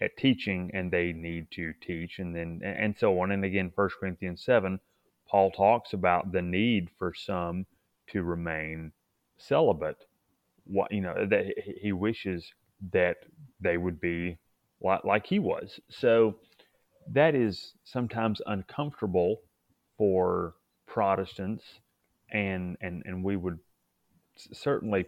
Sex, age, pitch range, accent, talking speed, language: male, 30-49, 90-110 Hz, American, 125 wpm, English